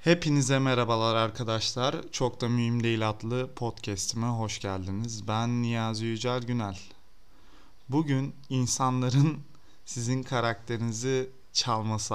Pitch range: 100-135 Hz